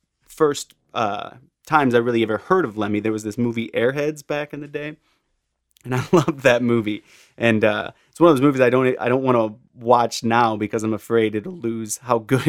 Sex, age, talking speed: male, 30-49, 215 wpm